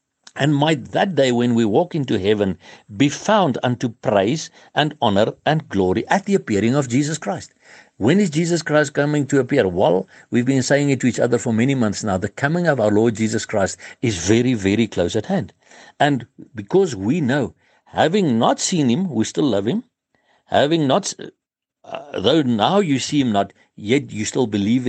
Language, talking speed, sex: English, 195 wpm, male